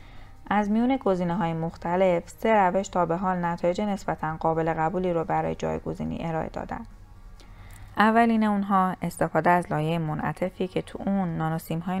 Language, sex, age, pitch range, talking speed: Persian, female, 20-39, 160-195 Hz, 140 wpm